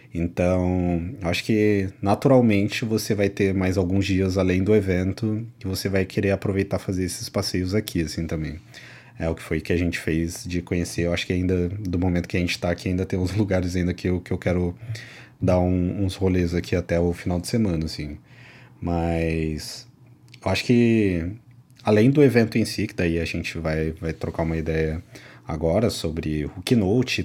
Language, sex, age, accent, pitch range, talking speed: Portuguese, male, 20-39, Brazilian, 85-105 Hz, 190 wpm